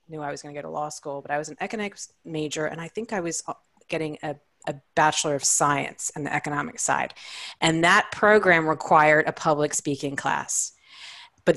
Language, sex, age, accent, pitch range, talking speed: English, female, 30-49, American, 160-230 Hz, 200 wpm